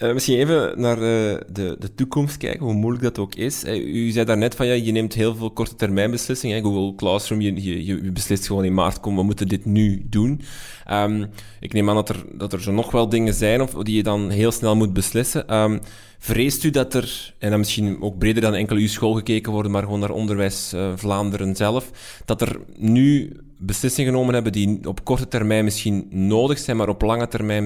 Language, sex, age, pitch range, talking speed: Dutch, male, 20-39, 100-125 Hz, 220 wpm